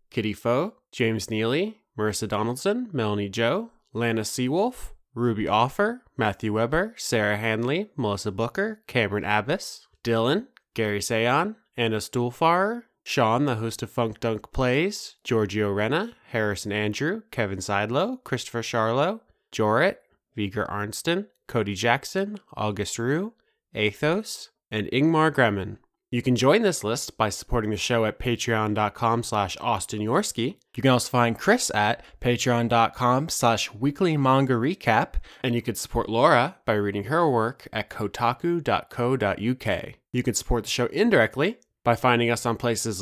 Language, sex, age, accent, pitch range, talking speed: English, male, 20-39, American, 110-145 Hz, 135 wpm